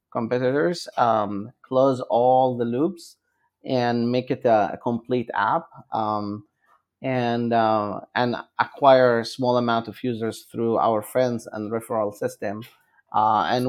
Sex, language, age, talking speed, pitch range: male, English, 30-49, 135 wpm, 110-125 Hz